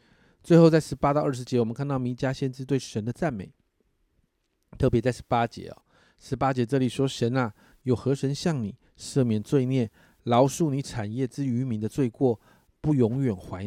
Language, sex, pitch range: Chinese, male, 110-140 Hz